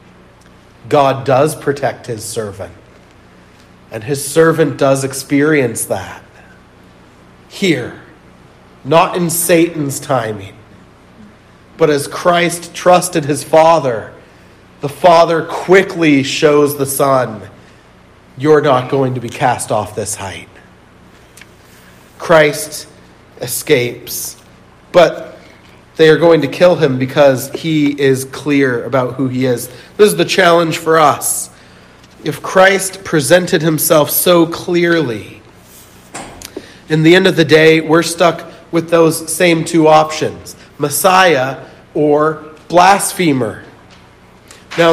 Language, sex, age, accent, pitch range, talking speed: English, male, 40-59, American, 135-170 Hz, 110 wpm